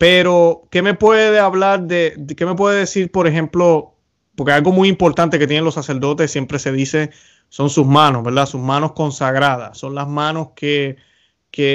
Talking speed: 185 wpm